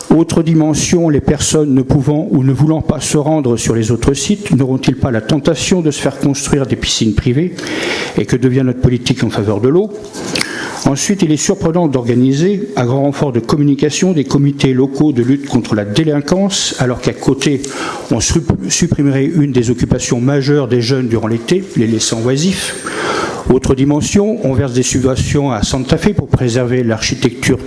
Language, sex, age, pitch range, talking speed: French, male, 50-69, 120-155 Hz, 180 wpm